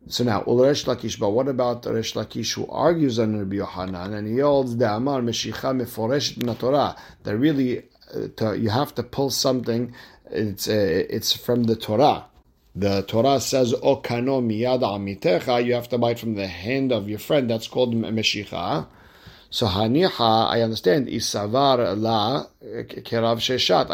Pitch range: 110-130 Hz